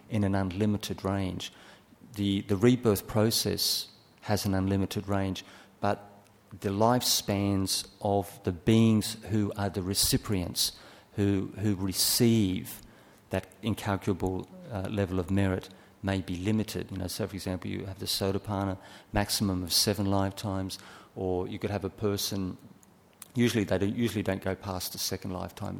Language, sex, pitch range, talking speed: English, male, 95-105 Hz, 145 wpm